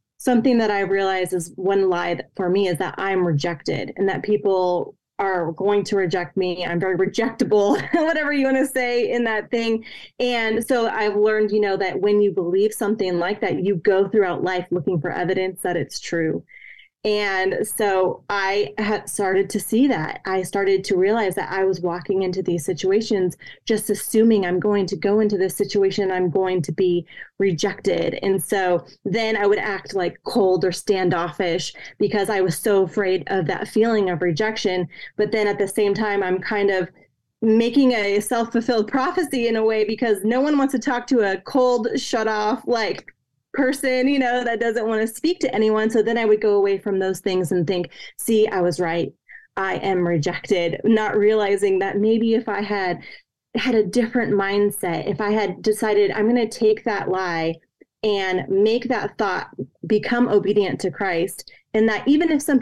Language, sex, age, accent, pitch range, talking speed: English, female, 20-39, American, 190-225 Hz, 190 wpm